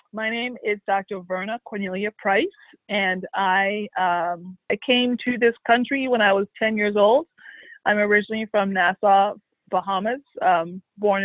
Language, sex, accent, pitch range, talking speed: English, female, American, 185-230 Hz, 150 wpm